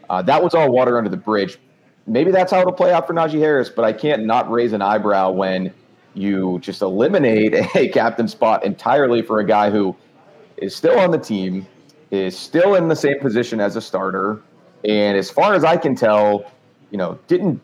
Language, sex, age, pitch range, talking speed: English, male, 30-49, 95-115 Hz, 205 wpm